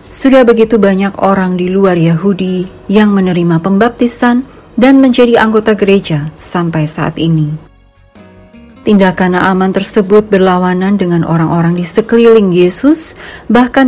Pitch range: 165-230 Hz